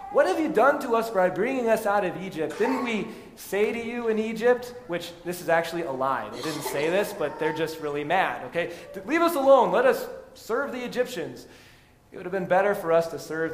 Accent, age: American, 20-39